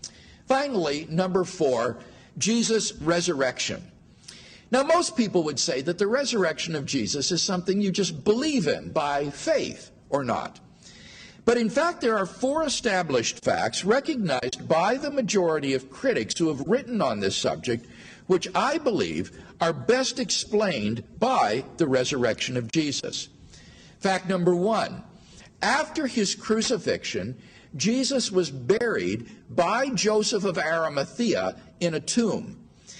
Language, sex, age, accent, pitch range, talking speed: English, male, 50-69, American, 160-235 Hz, 130 wpm